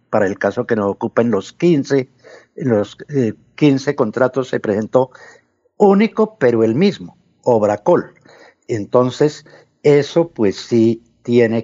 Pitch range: 110-145 Hz